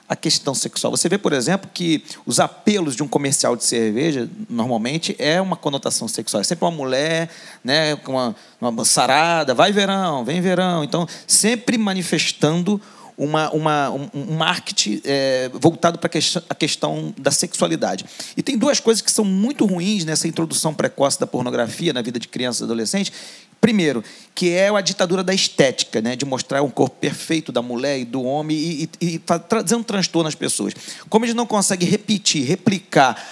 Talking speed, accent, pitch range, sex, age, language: 180 wpm, Brazilian, 150-200 Hz, male, 40-59, Portuguese